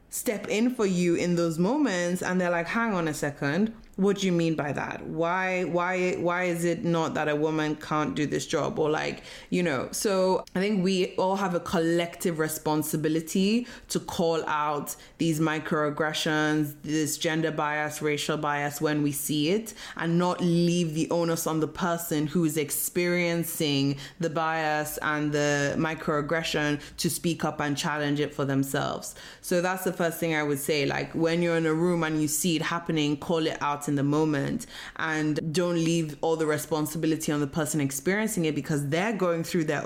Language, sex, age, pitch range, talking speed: English, female, 20-39, 150-175 Hz, 190 wpm